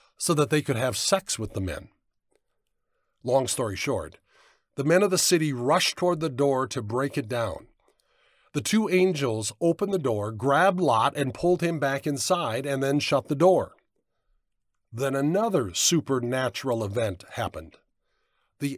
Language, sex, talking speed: English, male, 155 wpm